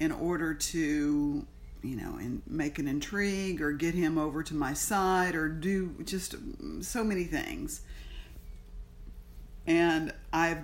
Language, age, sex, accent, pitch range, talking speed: English, 50-69, female, American, 150-185 Hz, 135 wpm